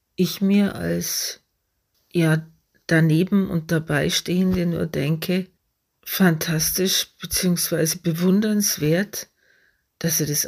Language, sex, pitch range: German, female, 160-185 Hz